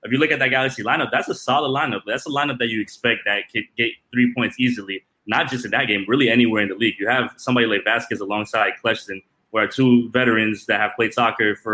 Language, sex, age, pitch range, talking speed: English, male, 20-39, 110-130 Hz, 245 wpm